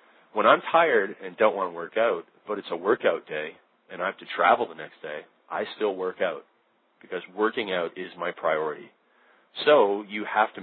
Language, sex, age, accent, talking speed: English, male, 40-59, American, 205 wpm